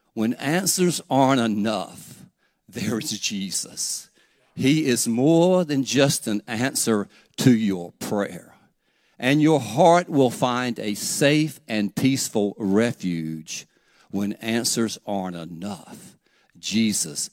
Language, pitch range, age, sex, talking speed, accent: English, 105-155 Hz, 60-79, male, 110 wpm, American